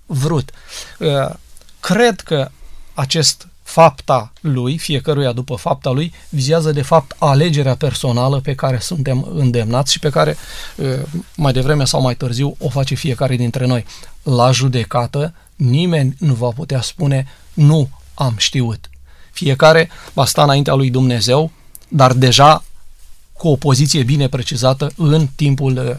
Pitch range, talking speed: 125-150 Hz, 130 wpm